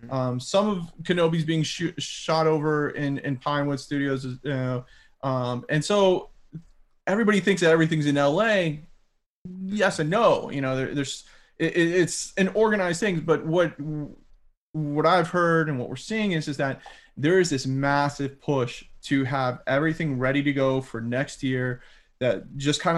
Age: 20-39